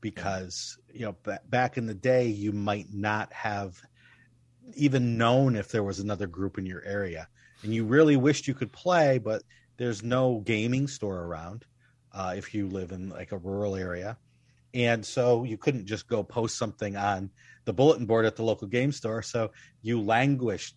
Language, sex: English, male